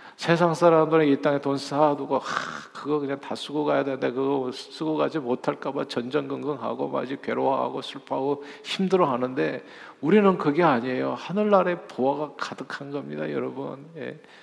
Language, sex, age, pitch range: Korean, male, 50-69, 140-175 Hz